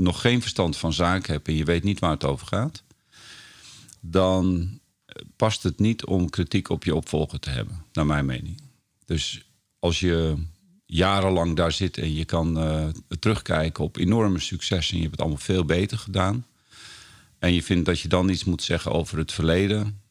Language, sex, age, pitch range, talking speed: Dutch, male, 50-69, 80-95 Hz, 185 wpm